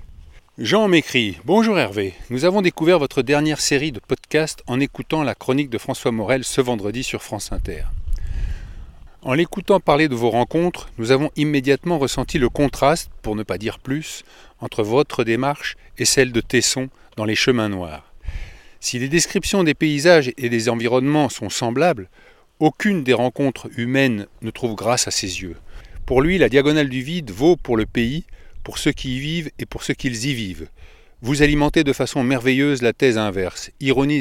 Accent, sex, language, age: French, male, French, 40-59